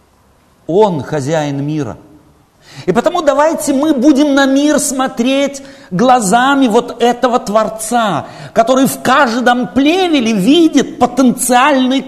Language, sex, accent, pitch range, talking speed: Russian, male, native, 170-260 Hz, 105 wpm